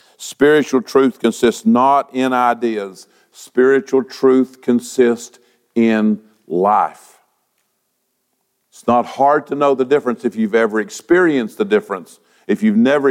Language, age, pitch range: English, 50-69, 105-130 Hz